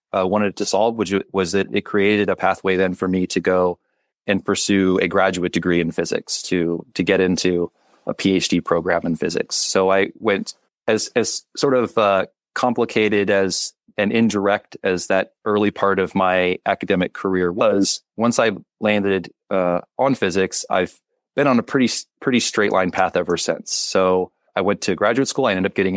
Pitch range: 90-100 Hz